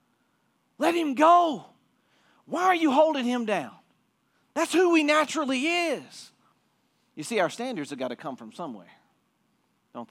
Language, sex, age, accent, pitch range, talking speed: English, male, 40-59, American, 185-245 Hz, 150 wpm